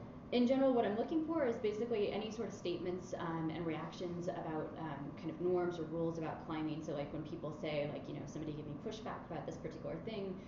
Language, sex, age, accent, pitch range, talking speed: English, female, 20-39, American, 155-185 Hz, 225 wpm